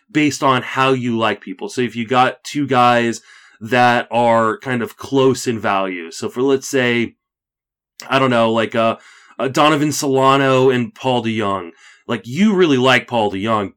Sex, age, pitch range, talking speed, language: male, 30-49, 110-135 Hz, 165 wpm, English